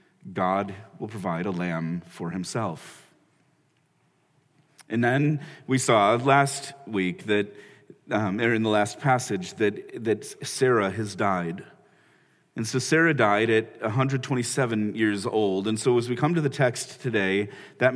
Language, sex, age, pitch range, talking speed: English, male, 40-59, 100-130 Hz, 140 wpm